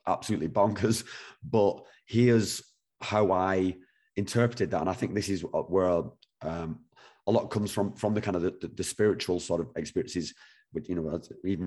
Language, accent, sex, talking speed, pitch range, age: English, British, male, 175 wpm, 90-110 Hz, 30-49